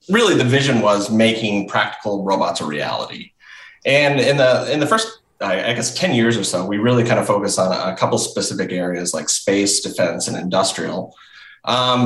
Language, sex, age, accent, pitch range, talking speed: English, male, 20-39, American, 95-120 Hz, 185 wpm